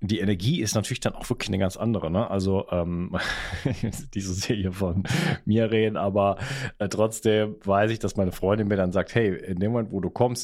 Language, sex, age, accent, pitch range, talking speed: German, male, 30-49, German, 90-105 Hz, 205 wpm